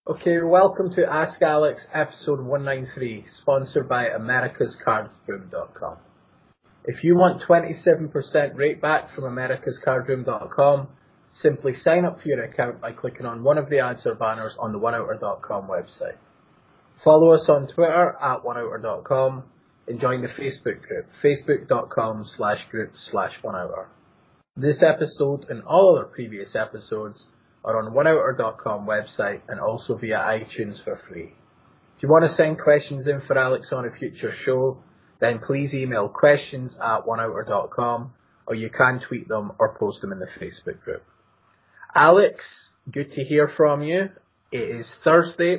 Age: 20-39